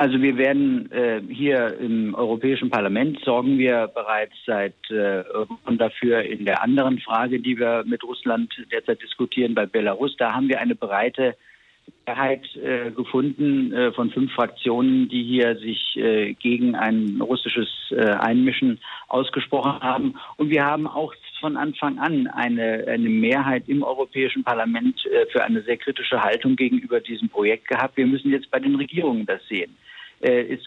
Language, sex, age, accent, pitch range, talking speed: German, male, 50-69, German, 120-155 Hz, 155 wpm